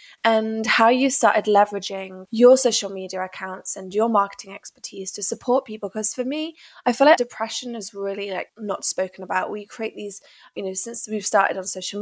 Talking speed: 195 wpm